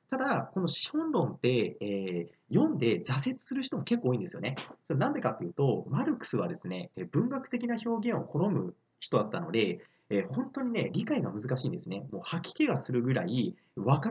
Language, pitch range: Japanese, 130-215 Hz